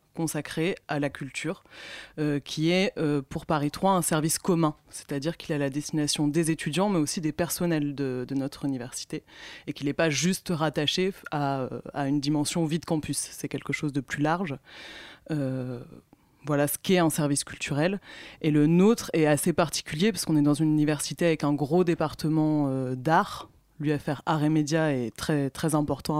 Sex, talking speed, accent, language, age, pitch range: female, 180 wpm, French, French, 20-39, 140-165 Hz